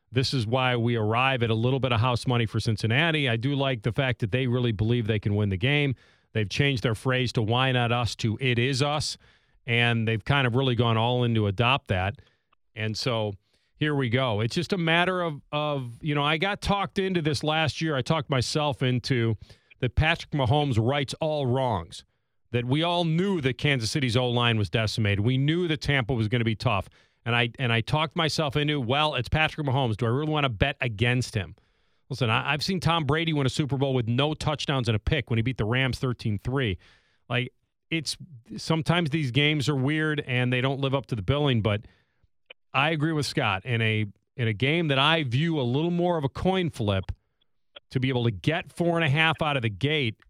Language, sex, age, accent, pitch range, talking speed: English, male, 40-59, American, 115-150 Hz, 225 wpm